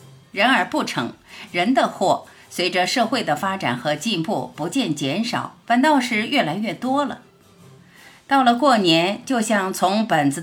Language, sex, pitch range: Chinese, female, 150-250 Hz